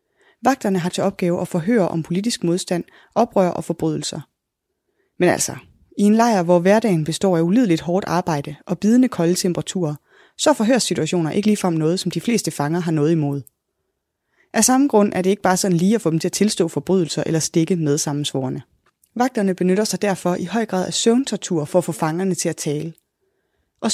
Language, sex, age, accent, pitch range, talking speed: Danish, female, 20-39, native, 165-220 Hz, 195 wpm